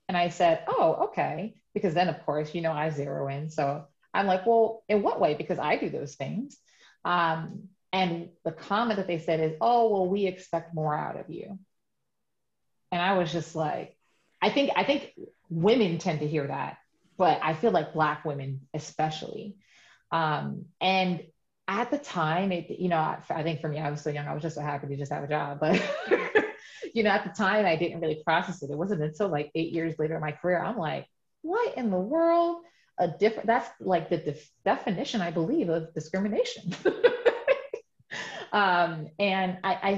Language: English